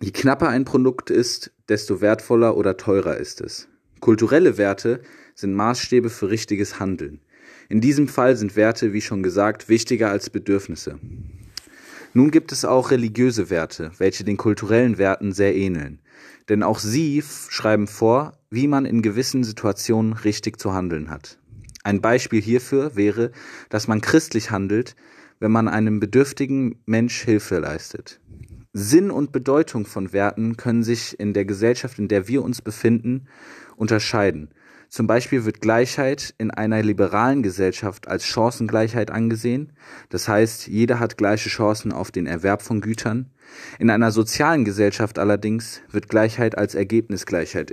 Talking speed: 145 wpm